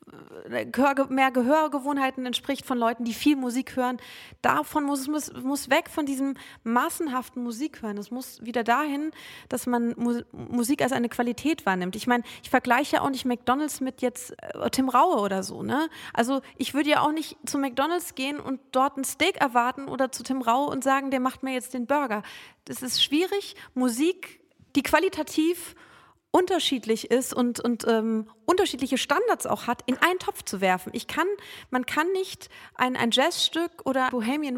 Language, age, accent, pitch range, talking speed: German, 30-49, German, 245-295 Hz, 175 wpm